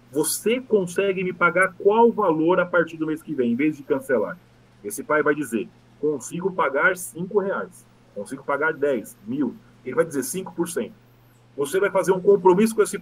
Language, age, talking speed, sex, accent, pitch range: Portuguese, 40-59, 180 wpm, male, Brazilian, 155-210 Hz